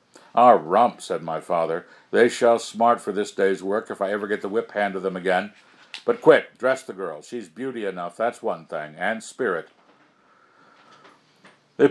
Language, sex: English, male